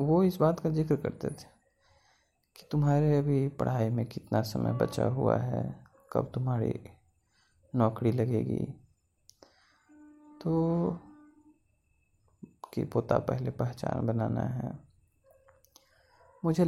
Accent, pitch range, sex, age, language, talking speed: native, 120-165 Hz, male, 30-49, Hindi, 110 wpm